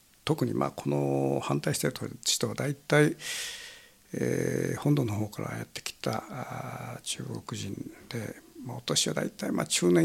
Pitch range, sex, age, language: 110-145 Hz, male, 60-79, Japanese